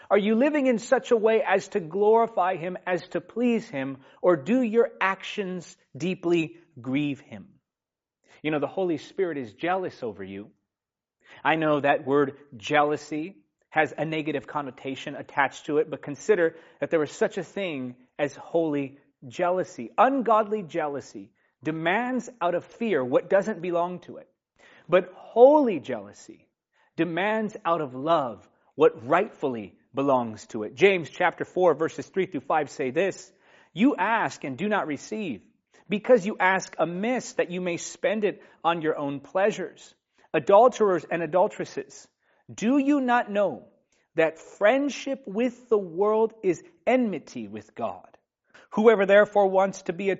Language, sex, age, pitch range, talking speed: English, male, 30-49, 150-220 Hz, 150 wpm